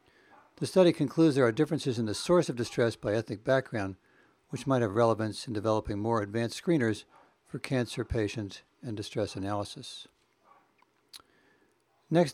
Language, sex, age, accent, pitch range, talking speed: English, male, 60-79, American, 110-140 Hz, 145 wpm